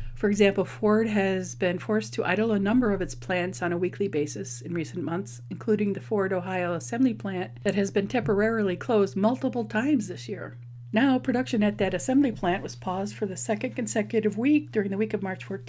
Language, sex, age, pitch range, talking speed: English, female, 50-69, 180-215 Hz, 205 wpm